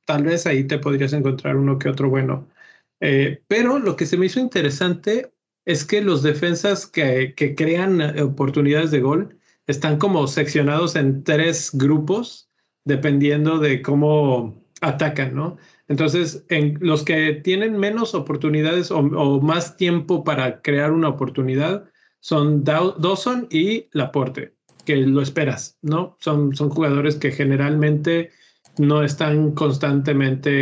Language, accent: Spanish, Mexican